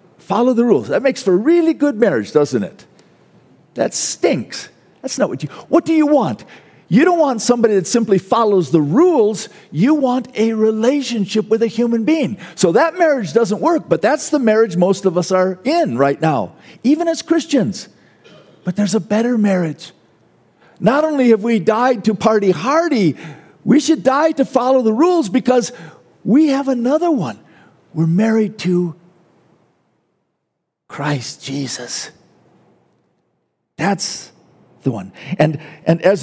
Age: 50-69